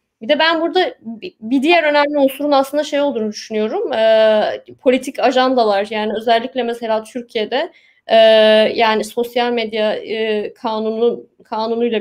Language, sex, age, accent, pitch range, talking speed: Turkish, female, 20-39, native, 225-275 Hz, 130 wpm